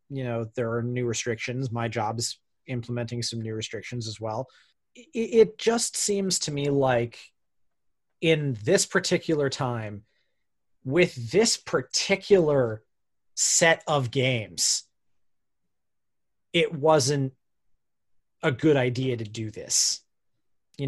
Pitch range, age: 120-165 Hz, 30-49